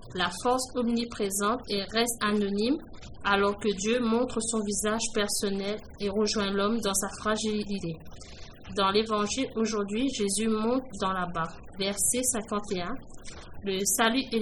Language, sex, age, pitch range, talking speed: French, female, 20-39, 205-230 Hz, 135 wpm